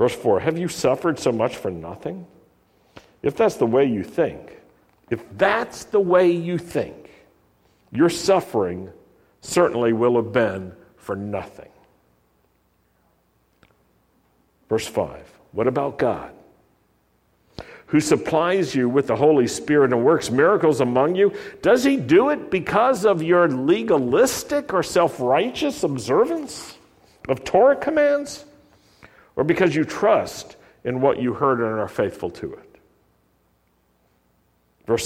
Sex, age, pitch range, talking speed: male, 60-79, 115-195 Hz, 125 wpm